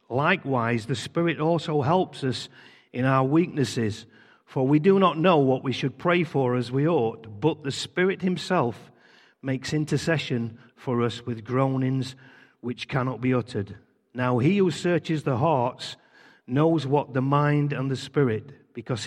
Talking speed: 155 wpm